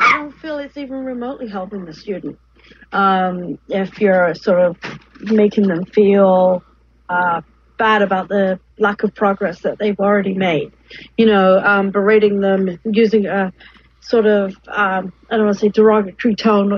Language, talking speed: English, 160 wpm